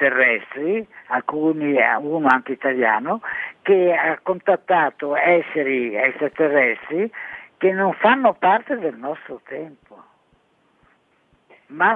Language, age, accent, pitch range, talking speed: Italian, 50-69, native, 145-180 Hz, 95 wpm